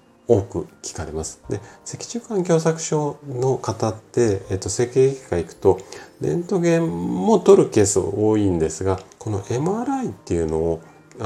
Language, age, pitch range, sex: Japanese, 40-59, 80-125 Hz, male